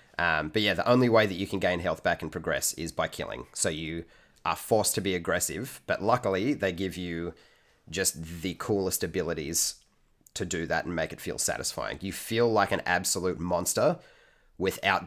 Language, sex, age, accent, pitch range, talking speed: English, male, 30-49, Australian, 85-100 Hz, 190 wpm